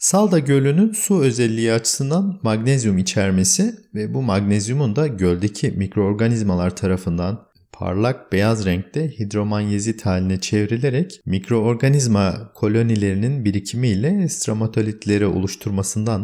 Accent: native